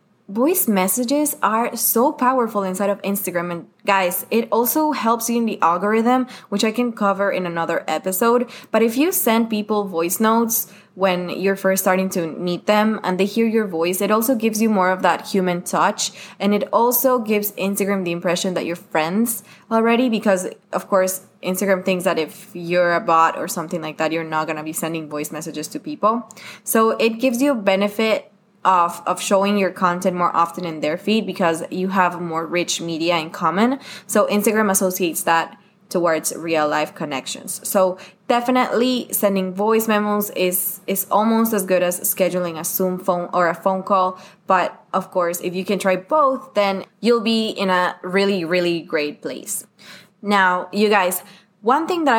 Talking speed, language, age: 185 wpm, English, 20-39